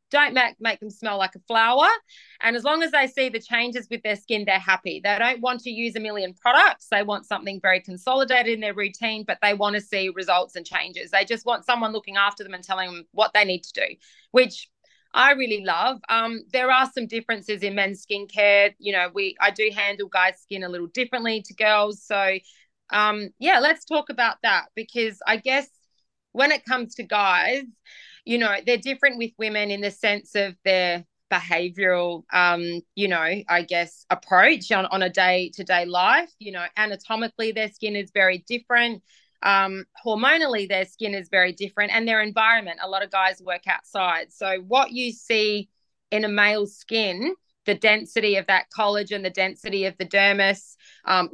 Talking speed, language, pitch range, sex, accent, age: 195 wpm, English, 190-230 Hz, female, Australian, 20-39